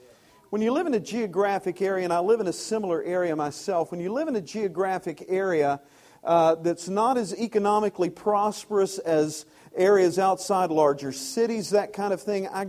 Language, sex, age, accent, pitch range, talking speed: English, male, 50-69, American, 170-225 Hz, 180 wpm